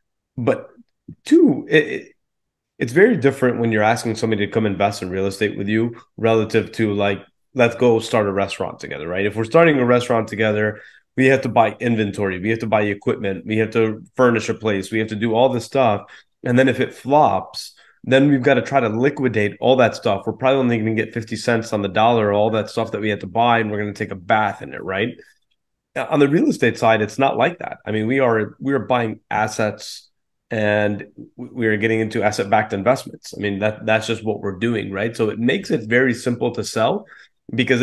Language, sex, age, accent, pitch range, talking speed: English, male, 30-49, American, 110-130 Hz, 230 wpm